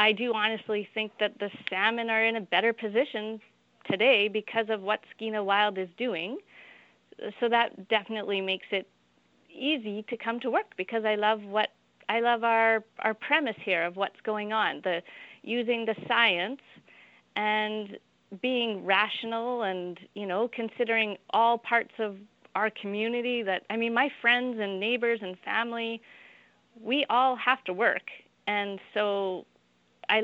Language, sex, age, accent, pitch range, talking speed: English, female, 30-49, American, 200-235 Hz, 155 wpm